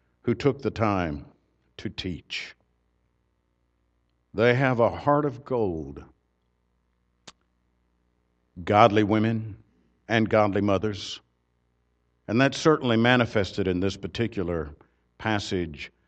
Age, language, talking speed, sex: 60-79, English, 95 wpm, male